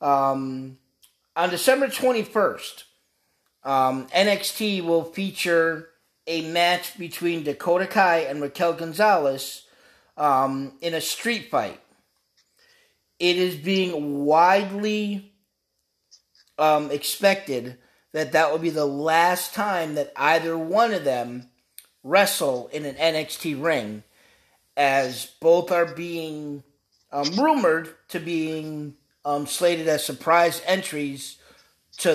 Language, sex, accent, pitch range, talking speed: English, male, American, 145-170 Hz, 110 wpm